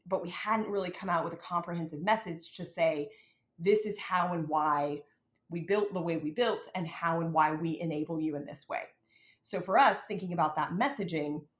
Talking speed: 205 wpm